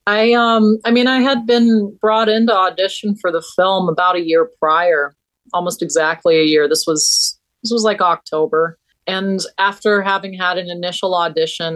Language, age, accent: English, 30-49, American